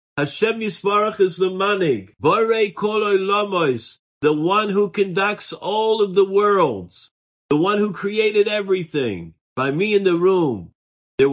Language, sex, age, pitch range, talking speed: English, male, 50-69, 110-165 Hz, 125 wpm